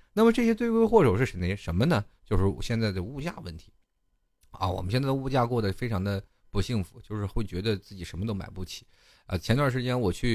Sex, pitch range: male, 90-125 Hz